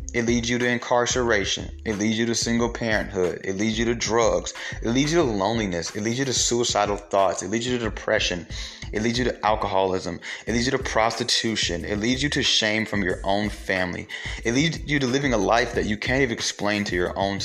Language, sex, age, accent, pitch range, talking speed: English, male, 30-49, American, 100-125 Hz, 225 wpm